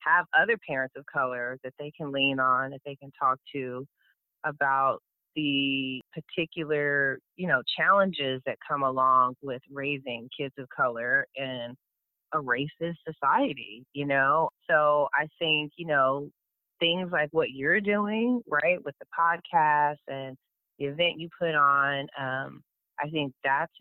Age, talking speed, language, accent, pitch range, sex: 30-49, 150 wpm, English, American, 135-165 Hz, female